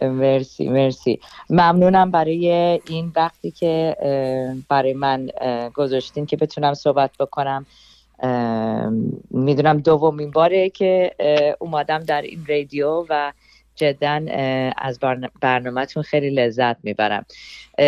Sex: female